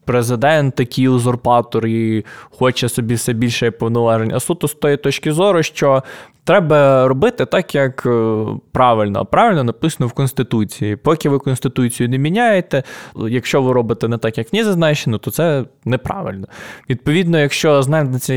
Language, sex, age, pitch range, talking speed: Ukrainian, male, 20-39, 115-140 Hz, 145 wpm